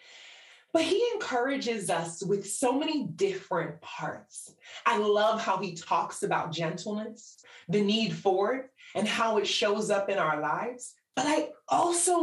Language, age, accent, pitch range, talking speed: English, 30-49, American, 185-290 Hz, 150 wpm